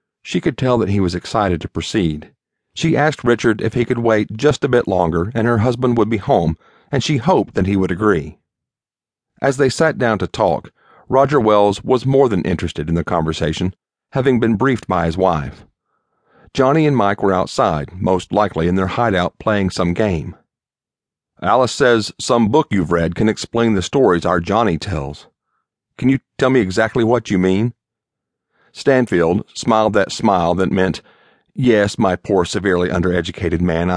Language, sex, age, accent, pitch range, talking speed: English, male, 50-69, American, 90-120 Hz, 175 wpm